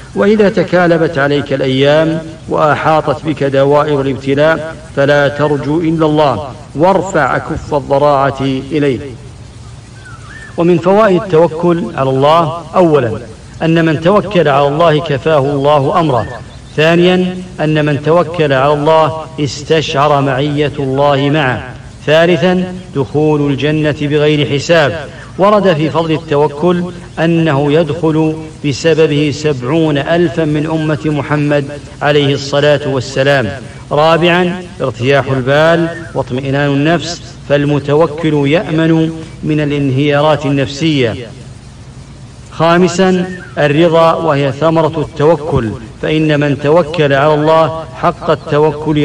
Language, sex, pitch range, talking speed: English, male, 140-160 Hz, 100 wpm